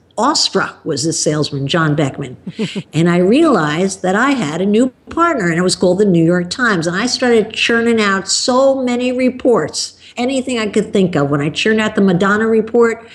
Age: 50-69